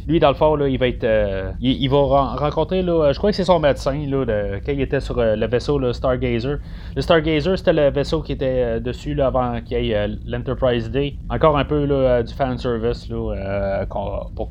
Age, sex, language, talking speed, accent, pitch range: 30-49, male, French, 240 wpm, Canadian, 110-140 Hz